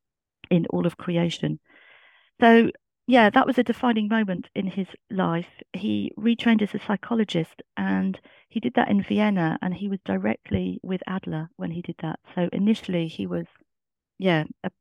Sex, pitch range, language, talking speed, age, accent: female, 170-220 Hz, English, 165 wpm, 40-59, British